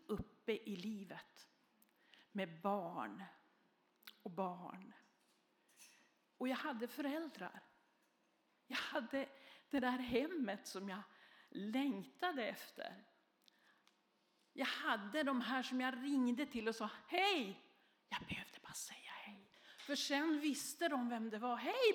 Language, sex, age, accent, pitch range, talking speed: Swedish, female, 50-69, native, 225-295 Hz, 120 wpm